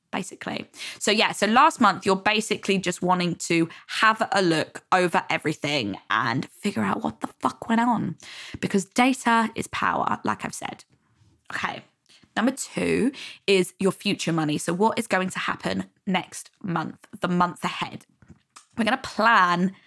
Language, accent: English, British